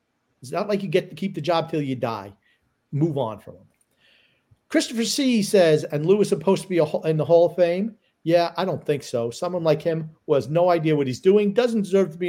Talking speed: 245 wpm